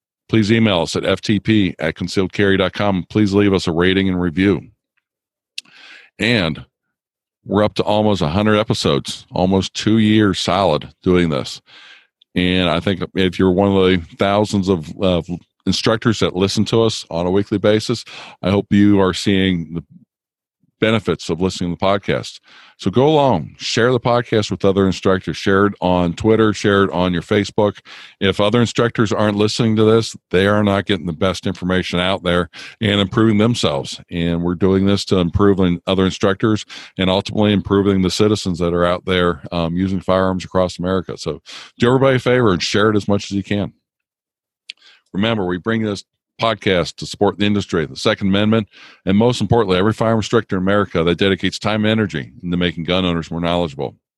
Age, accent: 50-69, American